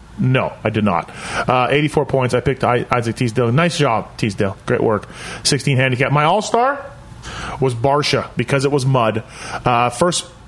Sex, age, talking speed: male, 30-49, 160 wpm